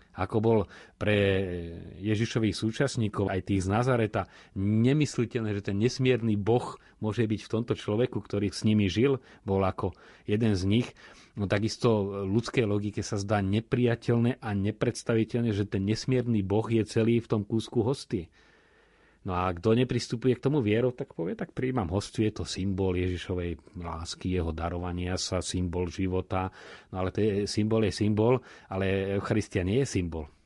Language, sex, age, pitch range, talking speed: Slovak, male, 30-49, 90-110 Hz, 160 wpm